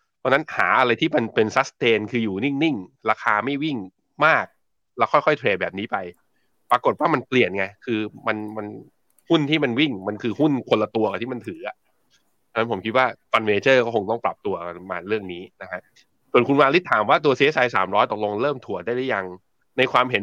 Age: 20-39